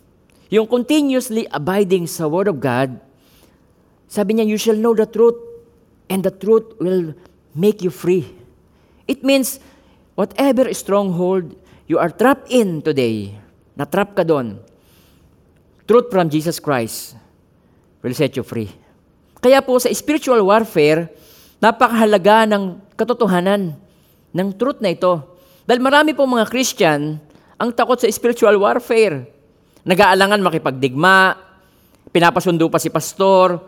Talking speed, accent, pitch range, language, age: 125 wpm, native, 155-235 Hz, Filipino, 40-59